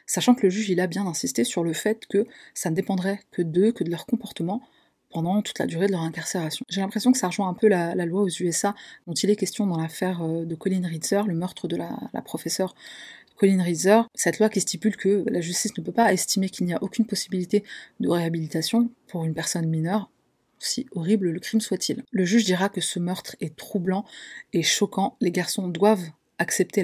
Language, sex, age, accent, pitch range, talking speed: French, female, 30-49, French, 175-205 Hz, 215 wpm